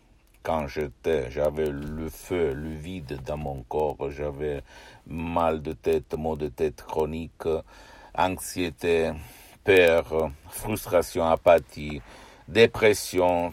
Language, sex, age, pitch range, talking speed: Italian, male, 60-79, 80-95 Hz, 100 wpm